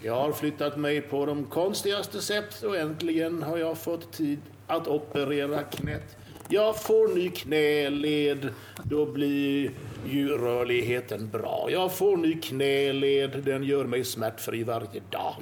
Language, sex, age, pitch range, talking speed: Swedish, male, 60-79, 140-185 Hz, 140 wpm